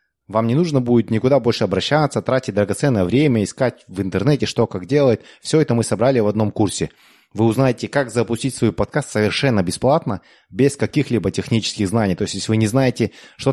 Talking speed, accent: 185 wpm, native